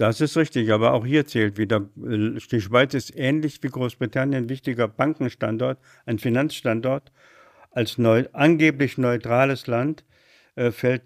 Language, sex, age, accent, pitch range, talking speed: German, male, 60-79, German, 110-130 Hz, 135 wpm